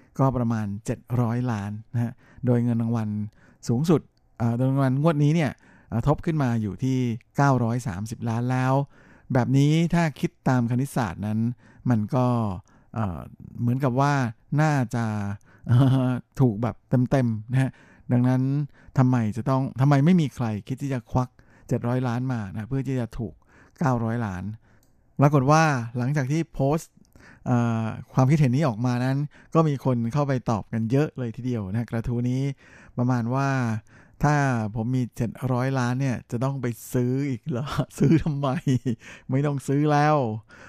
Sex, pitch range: male, 115-135 Hz